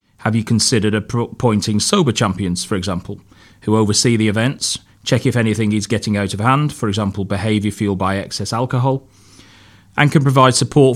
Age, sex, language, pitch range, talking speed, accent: 30-49, male, English, 100-120 Hz, 170 wpm, British